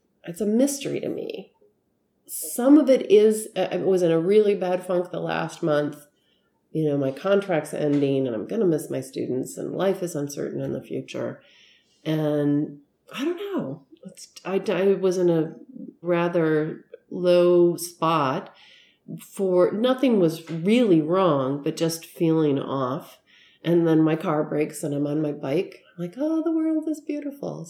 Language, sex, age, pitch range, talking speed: English, female, 40-59, 160-225 Hz, 165 wpm